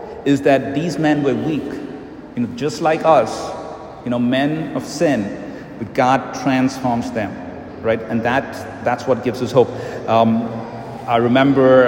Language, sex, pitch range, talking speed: English, male, 120-145 Hz, 155 wpm